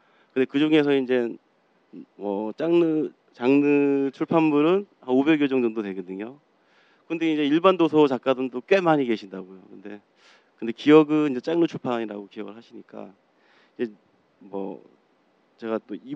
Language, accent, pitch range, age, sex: Korean, native, 105-140 Hz, 30-49, male